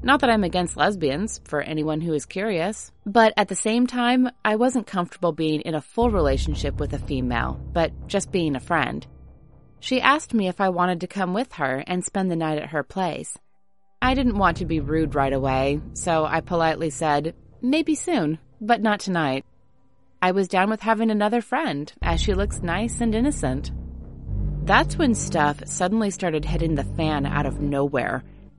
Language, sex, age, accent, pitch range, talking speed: English, female, 30-49, American, 155-210 Hz, 185 wpm